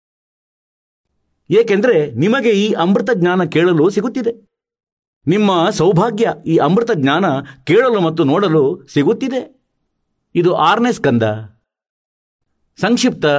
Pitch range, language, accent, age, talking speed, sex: 120-195 Hz, Kannada, native, 50-69, 85 wpm, male